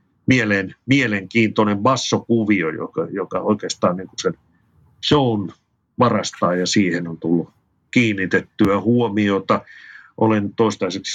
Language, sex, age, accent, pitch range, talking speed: Finnish, male, 50-69, native, 100-120 Hz, 95 wpm